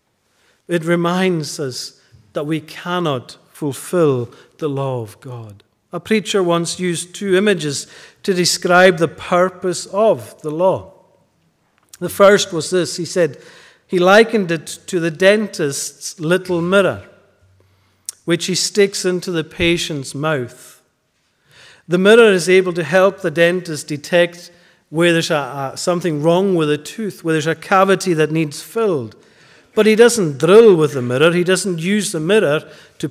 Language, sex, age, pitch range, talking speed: English, male, 50-69, 150-185 Hz, 150 wpm